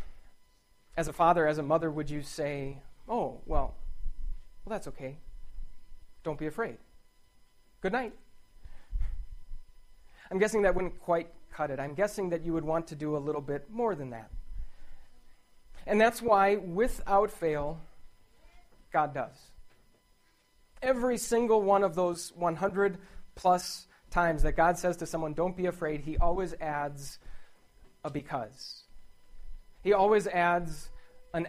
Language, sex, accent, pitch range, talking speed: English, male, American, 155-205 Hz, 135 wpm